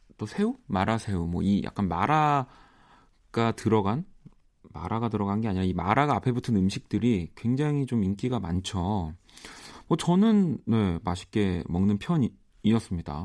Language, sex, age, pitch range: Korean, male, 40-59, 90-125 Hz